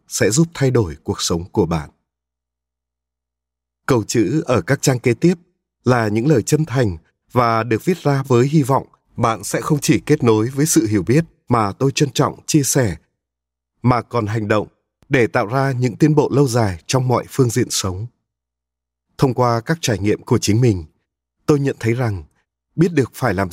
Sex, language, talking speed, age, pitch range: male, Vietnamese, 195 wpm, 20-39, 100-140 Hz